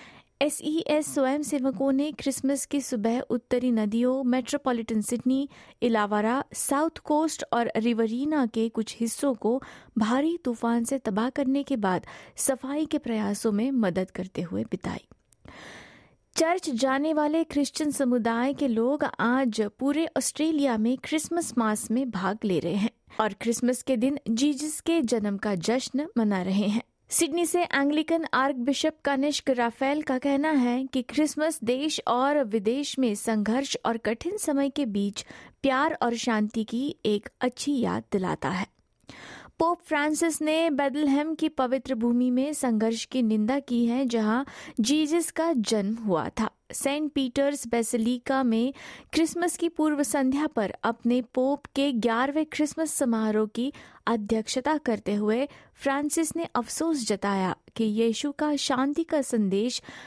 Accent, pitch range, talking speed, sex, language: native, 225-290 Hz, 145 wpm, female, Hindi